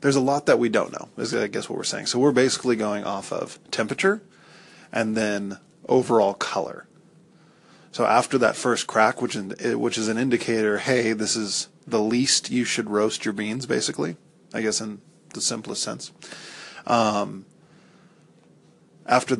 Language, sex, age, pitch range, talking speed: English, male, 20-39, 105-120 Hz, 165 wpm